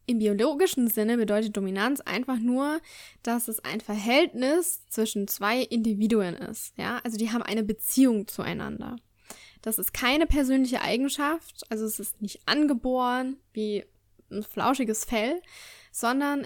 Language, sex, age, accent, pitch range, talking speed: German, female, 10-29, German, 215-265 Hz, 135 wpm